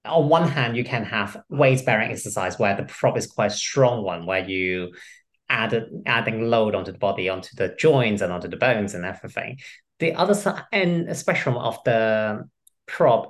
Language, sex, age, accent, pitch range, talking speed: English, male, 30-49, British, 105-140 Hz, 190 wpm